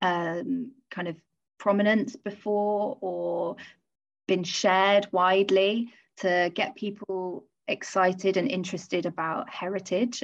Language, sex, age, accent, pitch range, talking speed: English, female, 20-39, British, 180-205 Hz, 100 wpm